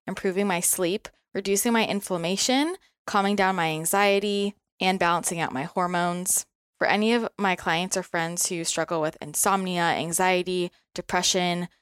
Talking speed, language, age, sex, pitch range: 140 wpm, English, 20-39, female, 175-205 Hz